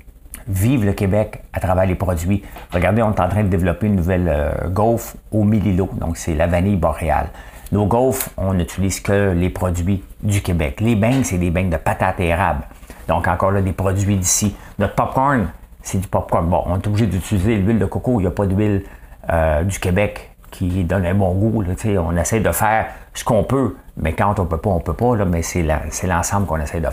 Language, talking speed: English, 225 wpm